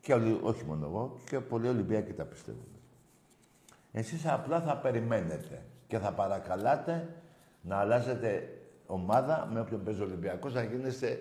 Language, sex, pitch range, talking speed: Greek, male, 95-125 Hz, 135 wpm